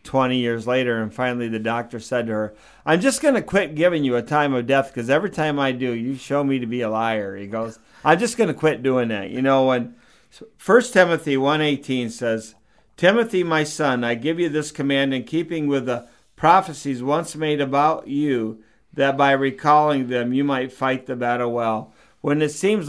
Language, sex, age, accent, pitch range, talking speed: English, male, 50-69, American, 125-155 Hz, 210 wpm